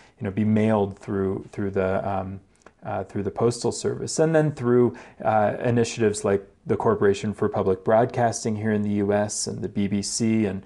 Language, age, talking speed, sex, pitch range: English, 30-49, 180 wpm, male, 100-120 Hz